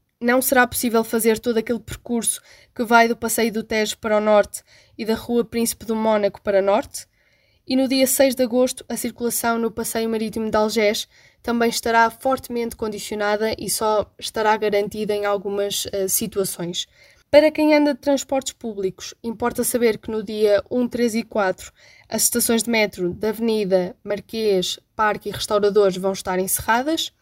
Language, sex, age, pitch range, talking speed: Portuguese, female, 10-29, 205-240 Hz, 170 wpm